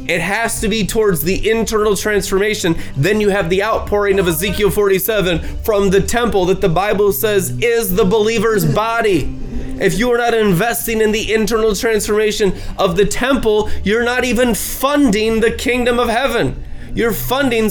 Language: English